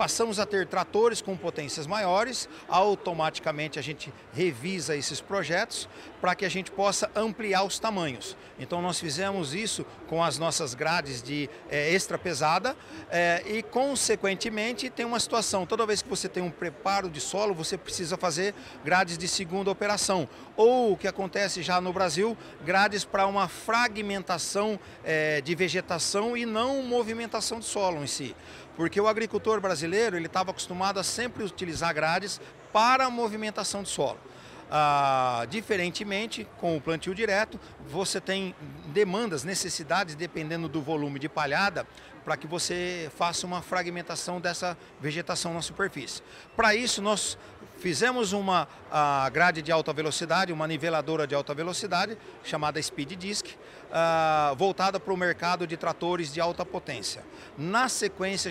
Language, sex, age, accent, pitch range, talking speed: Portuguese, male, 50-69, Brazilian, 165-205 Hz, 145 wpm